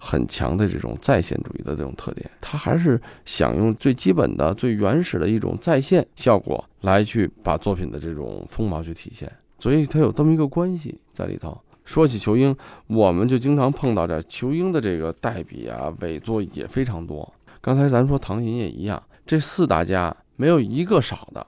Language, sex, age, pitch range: Chinese, male, 20-39, 90-130 Hz